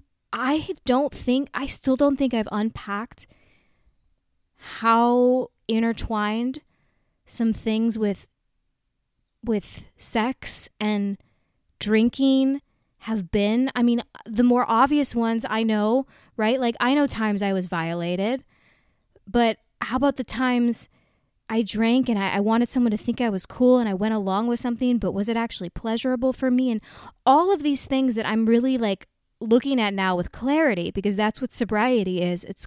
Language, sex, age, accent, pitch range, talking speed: English, female, 20-39, American, 215-270 Hz, 160 wpm